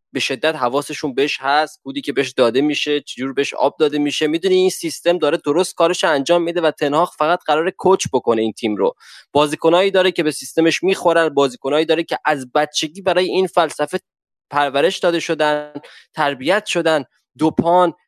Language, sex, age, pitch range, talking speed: Persian, male, 20-39, 145-185 Hz, 175 wpm